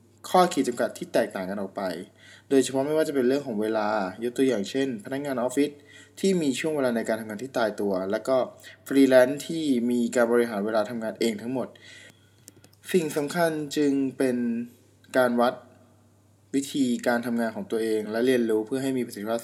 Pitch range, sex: 110-135 Hz, male